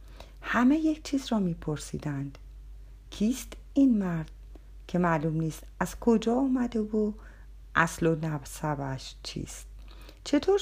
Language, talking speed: Persian, 115 wpm